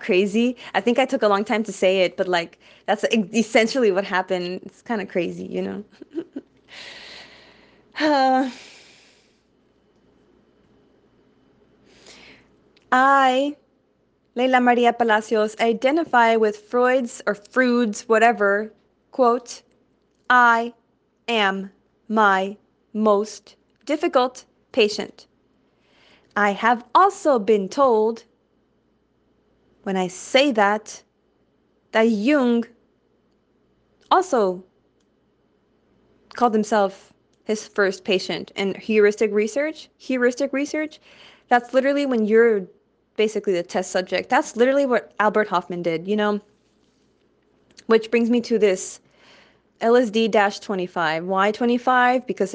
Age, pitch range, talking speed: 20-39, 195-245 Hz, 100 wpm